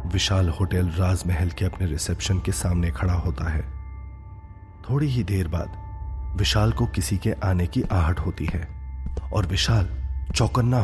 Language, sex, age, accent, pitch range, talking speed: Hindi, male, 30-49, native, 85-105 Hz, 150 wpm